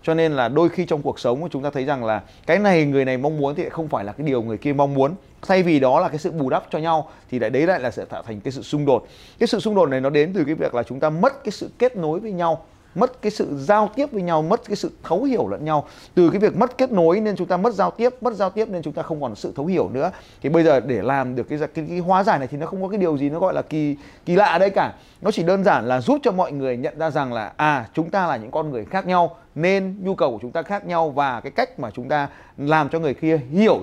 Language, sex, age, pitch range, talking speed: Vietnamese, male, 20-39, 140-195 Hz, 315 wpm